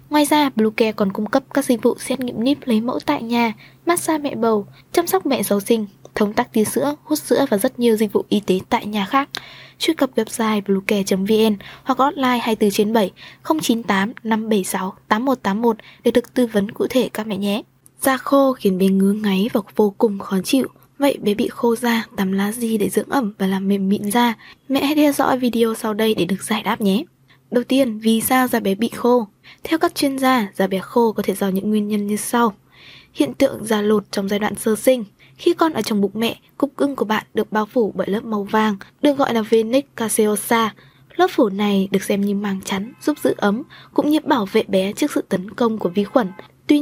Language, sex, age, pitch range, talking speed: Vietnamese, female, 20-39, 205-260 Hz, 225 wpm